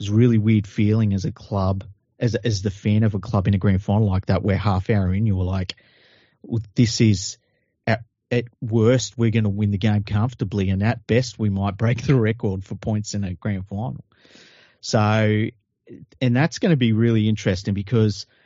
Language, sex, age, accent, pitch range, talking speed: English, male, 40-59, Australian, 100-120 Hz, 210 wpm